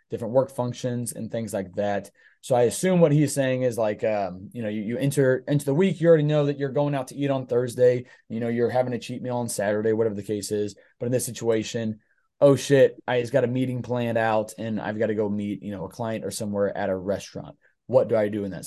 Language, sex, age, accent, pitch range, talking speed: English, male, 20-39, American, 105-130 Hz, 265 wpm